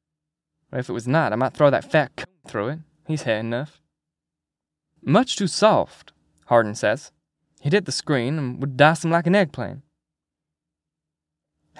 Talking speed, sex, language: 160 wpm, male, English